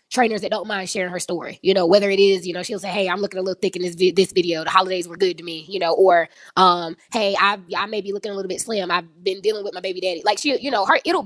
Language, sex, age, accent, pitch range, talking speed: English, female, 20-39, American, 185-230 Hz, 320 wpm